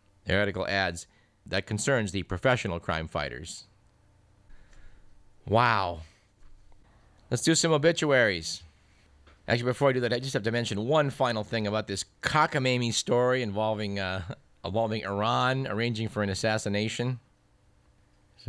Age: 50-69